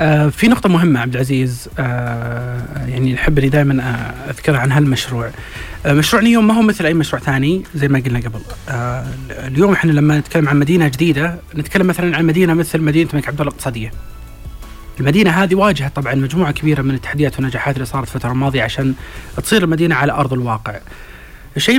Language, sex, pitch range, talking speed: Arabic, male, 130-165 Hz, 160 wpm